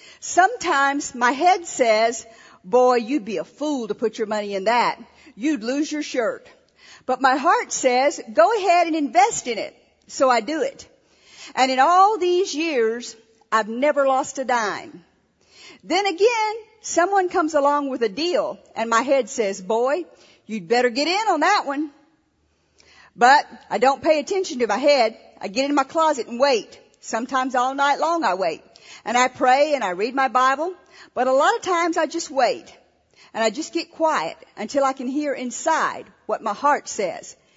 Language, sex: English, female